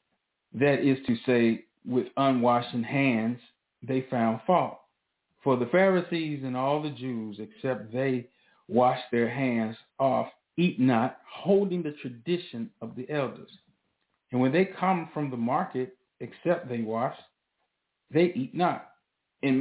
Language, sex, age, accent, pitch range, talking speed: English, male, 40-59, American, 130-170 Hz, 140 wpm